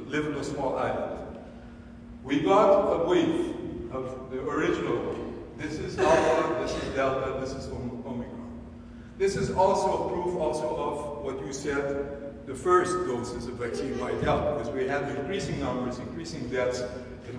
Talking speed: 155 wpm